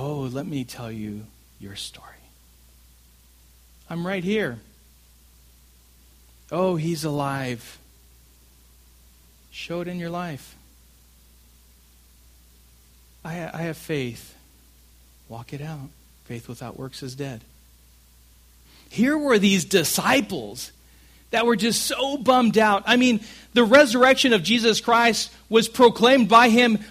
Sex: male